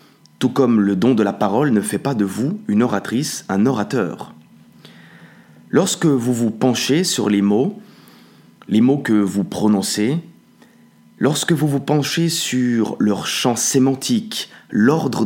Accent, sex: French, male